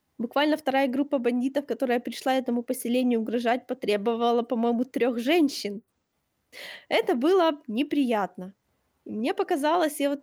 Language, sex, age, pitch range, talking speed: Ukrainian, female, 20-39, 235-295 Hz, 115 wpm